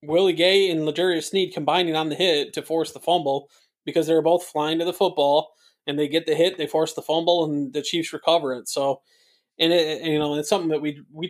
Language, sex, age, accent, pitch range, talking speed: English, male, 20-39, American, 145-170 Hz, 240 wpm